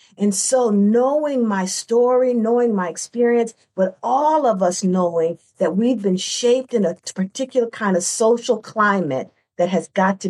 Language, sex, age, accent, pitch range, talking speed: English, female, 50-69, American, 180-235 Hz, 165 wpm